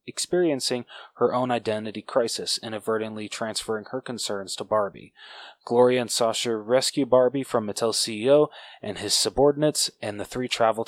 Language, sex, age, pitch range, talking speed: English, male, 20-39, 110-130 Hz, 145 wpm